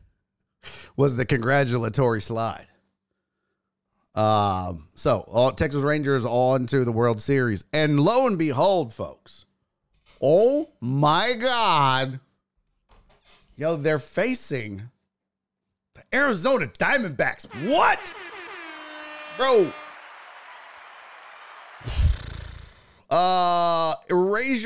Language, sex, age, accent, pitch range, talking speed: English, male, 40-59, American, 120-180 Hz, 75 wpm